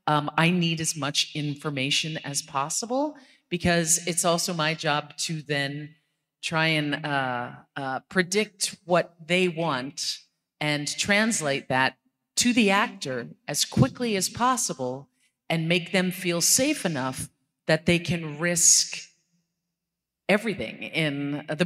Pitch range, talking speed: 145-175 Hz, 125 wpm